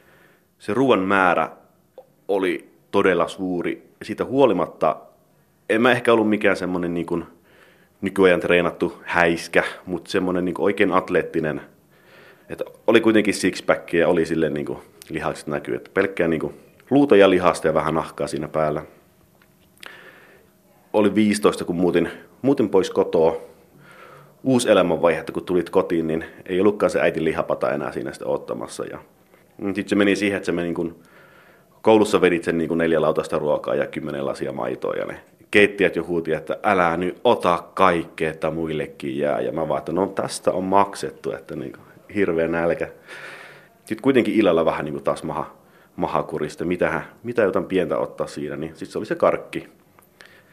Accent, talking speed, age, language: native, 160 wpm, 30-49, Finnish